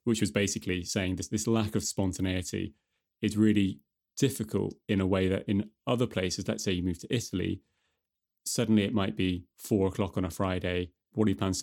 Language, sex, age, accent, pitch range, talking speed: English, male, 20-39, British, 95-110 Hz, 205 wpm